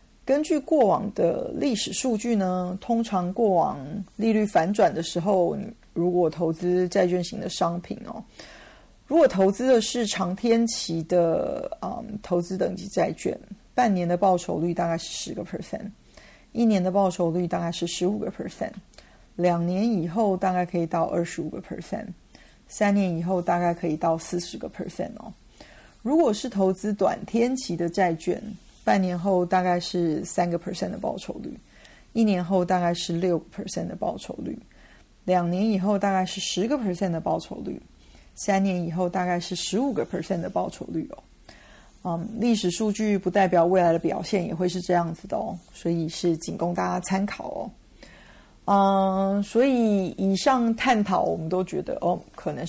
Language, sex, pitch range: Chinese, female, 175-210 Hz